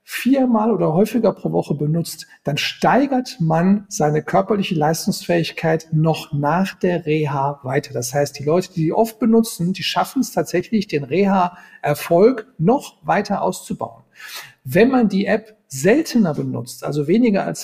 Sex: male